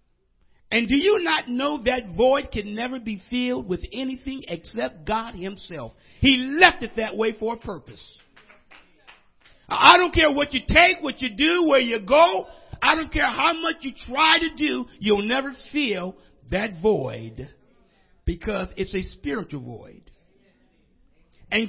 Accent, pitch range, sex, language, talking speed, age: American, 180-275 Hz, male, English, 155 wpm, 50-69